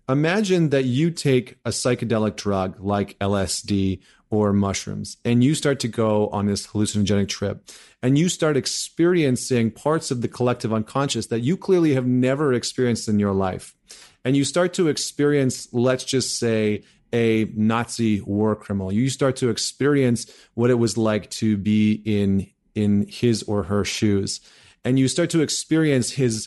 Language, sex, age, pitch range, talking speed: English, male, 30-49, 110-140 Hz, 165 wpm